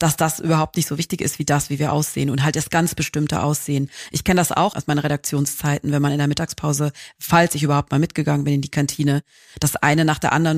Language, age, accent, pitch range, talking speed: German, 40-59, German, 150-170 Hz, 250 wpm